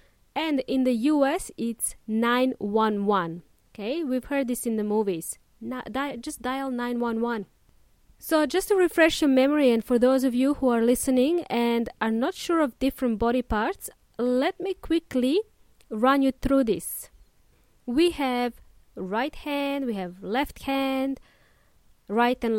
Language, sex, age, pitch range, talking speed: English, female, 20-39, 225-295 Hz, 150 wpm